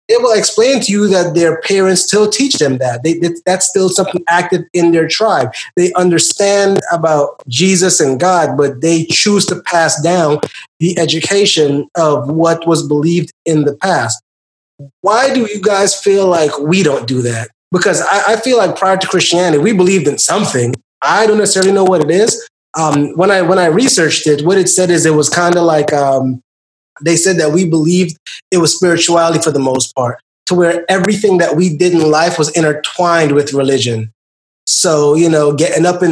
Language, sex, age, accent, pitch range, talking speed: English, male, 20-39, American, 150-185 Hz, 190 wpm